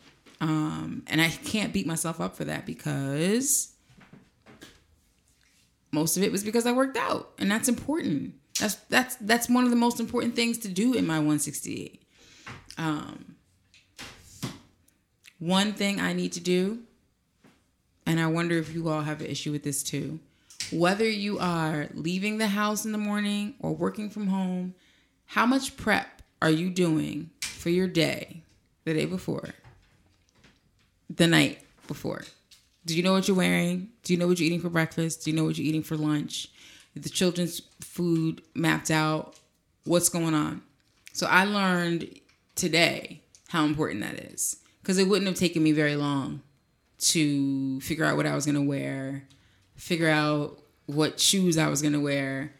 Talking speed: 165 wpm